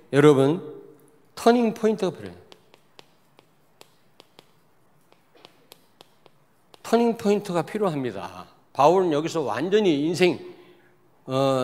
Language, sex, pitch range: Korean, male, 135-195 Hz